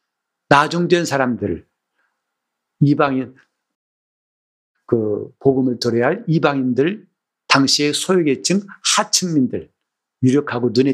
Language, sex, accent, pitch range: Korean, male, native, 120-175 Hz